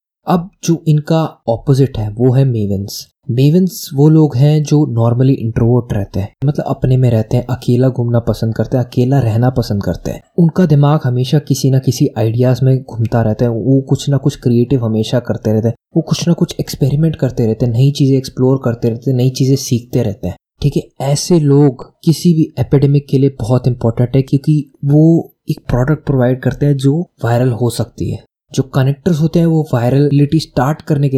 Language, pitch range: Hindi, 120-145 Hz